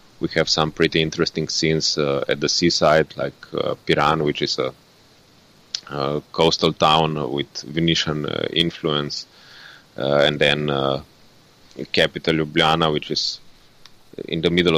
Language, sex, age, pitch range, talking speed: English, male, 30-49, 75-80 Hz, 140 wpm